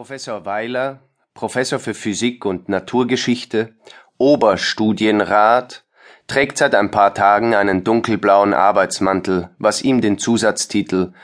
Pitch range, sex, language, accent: 100-125 Hz, male, German, German